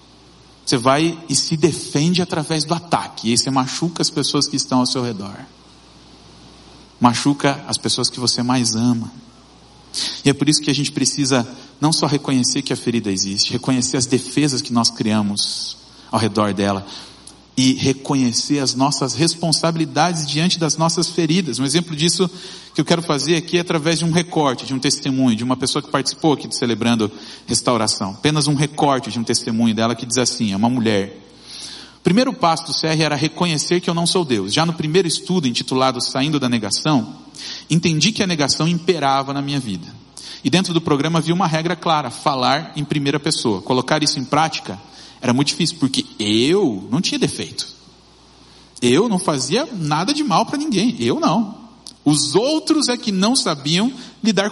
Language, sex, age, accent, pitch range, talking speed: Portuguese, male, 40-59, Brazilian, 125-170 Hz, 185 wpm